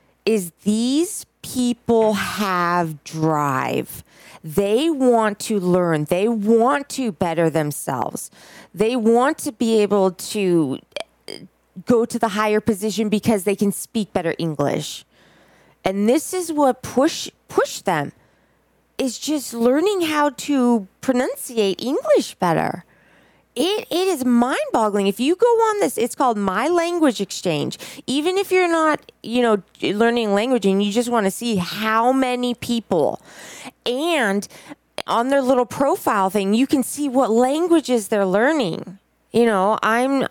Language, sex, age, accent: English, female, 20-39, American